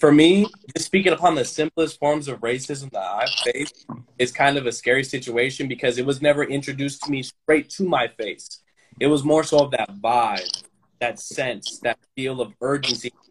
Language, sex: English, male